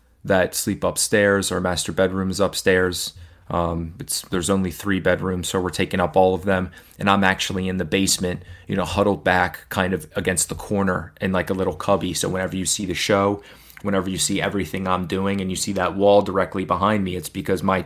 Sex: male